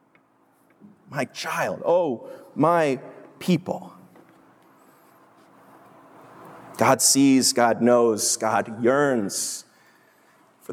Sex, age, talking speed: male, 30-49, 65 wpm